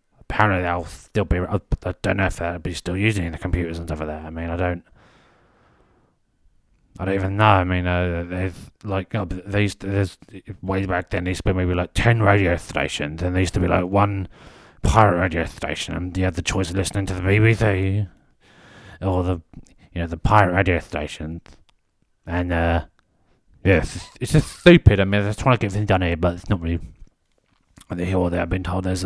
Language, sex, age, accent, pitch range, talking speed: English, male, 30-49, British, 85-100 Hz, 215 wpm